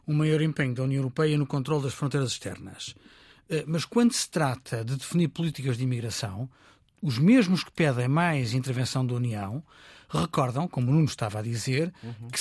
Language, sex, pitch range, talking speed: Portuguese, male, 130-195 Hz, 175 wpm